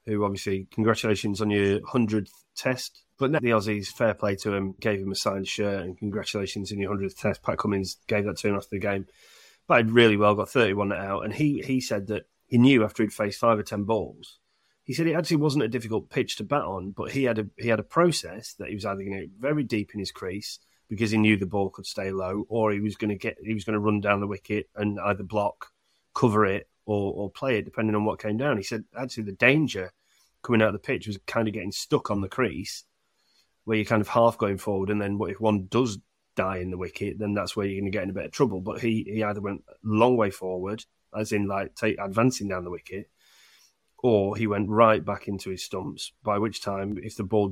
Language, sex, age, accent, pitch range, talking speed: English, male, 30-49, British, 100-115 Hz, 255 wpm